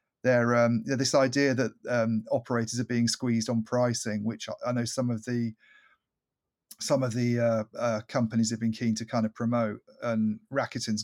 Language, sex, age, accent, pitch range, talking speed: English, male, 40-59, British, 110-125 Hz, 180 wpm